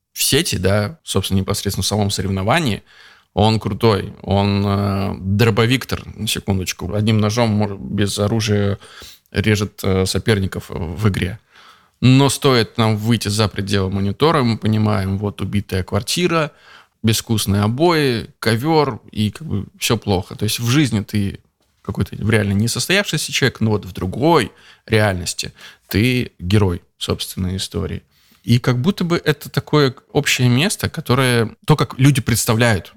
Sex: male